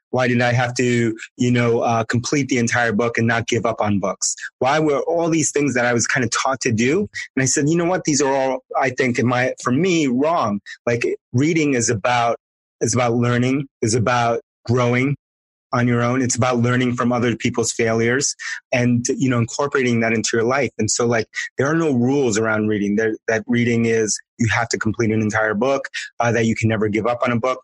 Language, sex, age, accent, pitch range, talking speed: English, male, 30-49, American, 115-130 Hz, 230 wpm